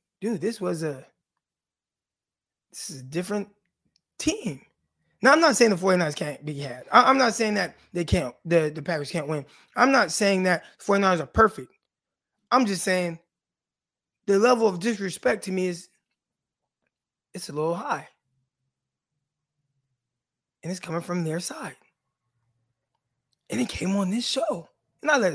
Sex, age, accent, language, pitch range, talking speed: male, 20-39, American, English, 160-240 Hz, 155 wpm